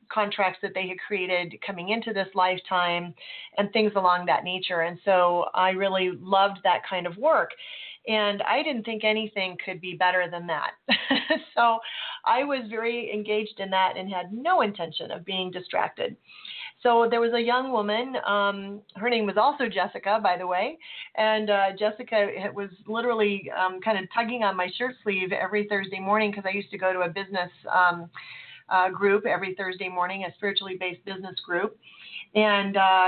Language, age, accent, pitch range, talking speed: English, 40-59, American, 185-220 Hz, 180 wpm